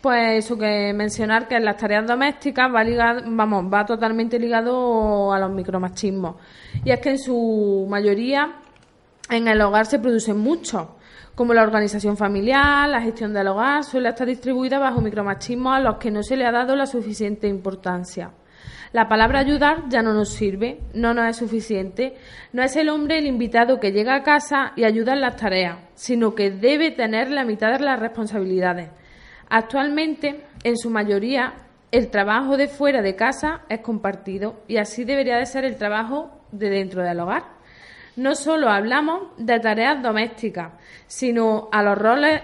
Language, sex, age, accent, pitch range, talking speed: Spanish, female, 20-39, Spanish, 205-255 Hz, 170 wpm